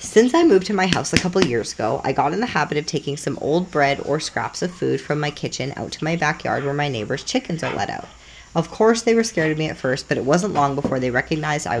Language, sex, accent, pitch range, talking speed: English, female, American, 135-175 Hz, 280 wpm